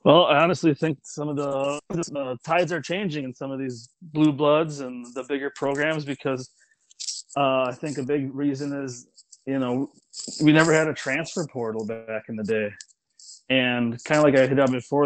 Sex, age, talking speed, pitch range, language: male, 30-49, 195 wpm, 125-155 Hz, English